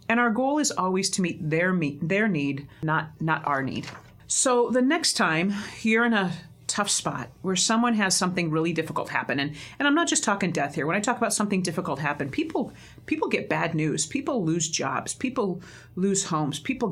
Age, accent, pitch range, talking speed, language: 40-59, American, 155-210 Hz, 205 wpm, English